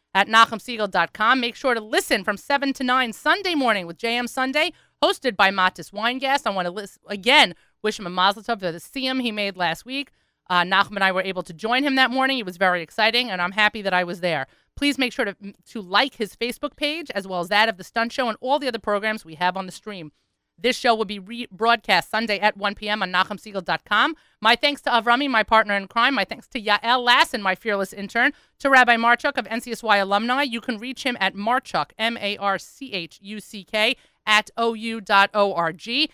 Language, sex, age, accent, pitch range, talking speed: English, female, 30-49, American, 200-260 Hz, 215 wpm